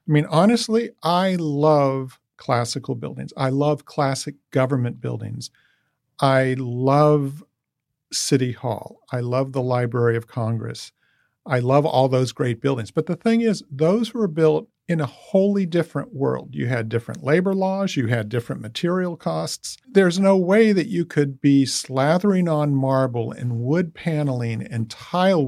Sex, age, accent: male, 50-69, American